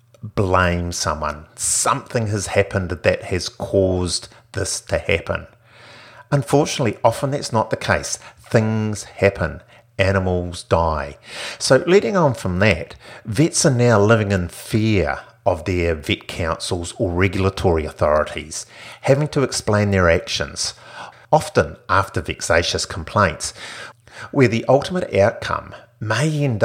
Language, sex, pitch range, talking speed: English, male, 95-120 Hz, 125 wpm